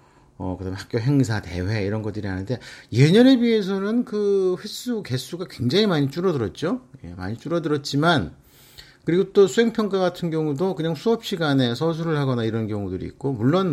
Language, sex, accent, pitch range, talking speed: English, male, Korean, 120-175 Hz, 140 wpm